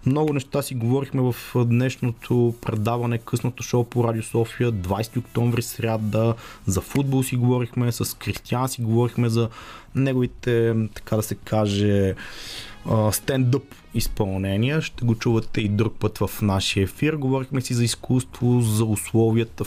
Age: 20-39